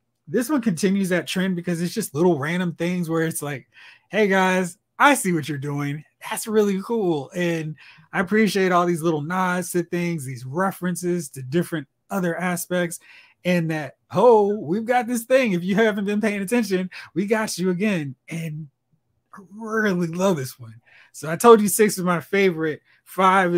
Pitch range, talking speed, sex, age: 145-185 Hz, 180 wpm, male, 20-39